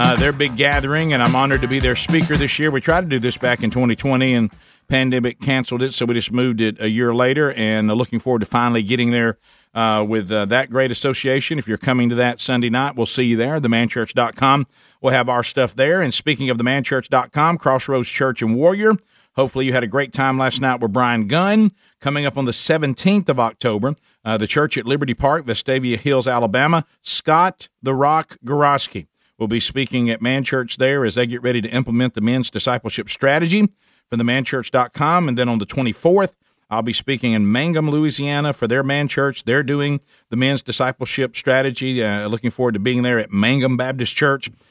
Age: 50-69